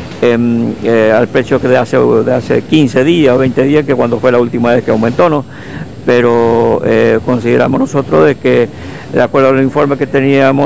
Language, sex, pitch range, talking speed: Spanish, male, 120-140 Hz, 195 wpm